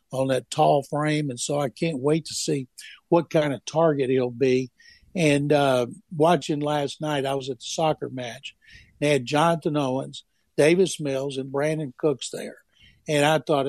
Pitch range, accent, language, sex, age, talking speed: 135-160 Hz, American, English, male, 60-79, 180 wpm